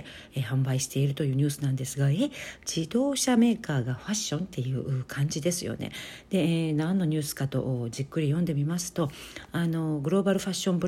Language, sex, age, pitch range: Japanese, female, 50-69, 135-180 Hz